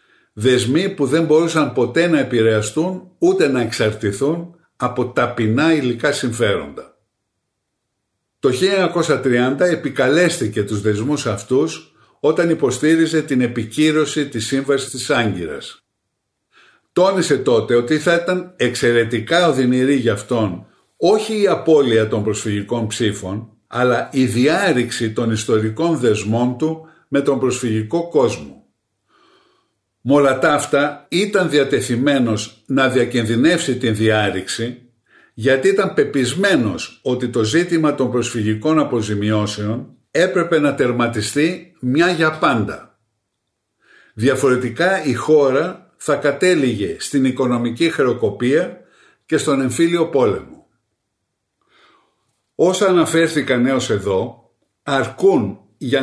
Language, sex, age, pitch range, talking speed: Greek, male, 50-69, 115-160 Hz, 100 wpm